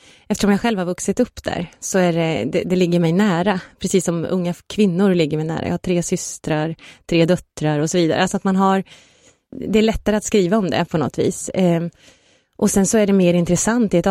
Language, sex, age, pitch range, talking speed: Swedish, female, 30-49, 165-200 Hz, 245 wpm